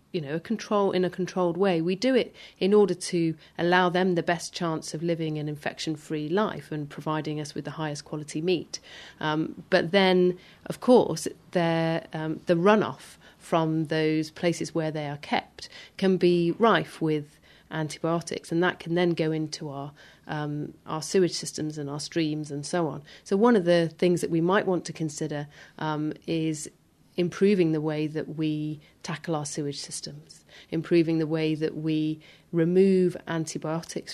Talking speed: 175 wpm